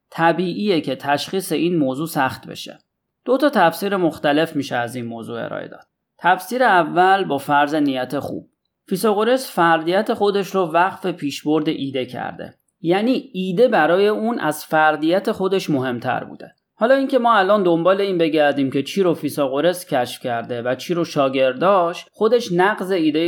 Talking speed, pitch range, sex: 155 wpm, 145-195 Hz, male